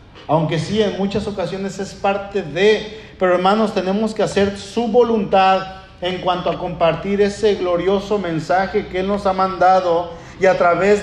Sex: male